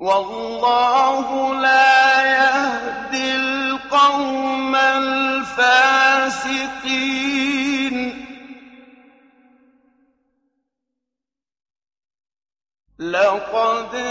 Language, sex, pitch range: Arabic, male, 245-270 Hz